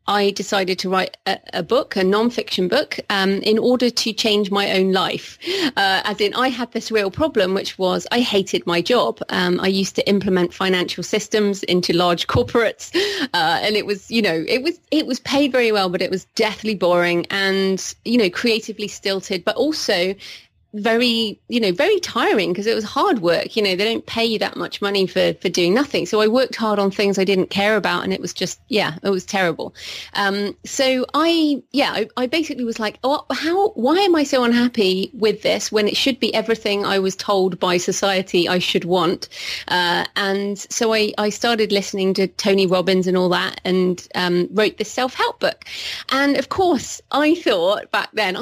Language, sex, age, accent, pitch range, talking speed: English, female, 30-49, British, 190-230 Hz, 205 wpm